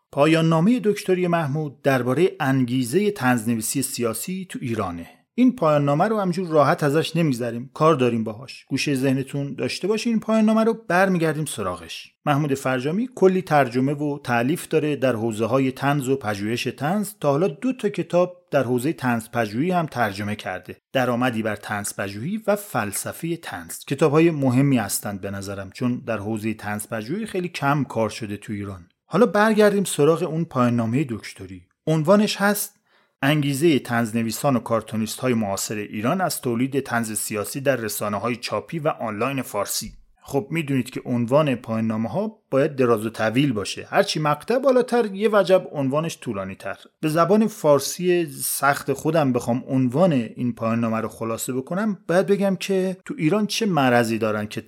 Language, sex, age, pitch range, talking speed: English, male, 30-49, 115-175 Hz, 155 wpm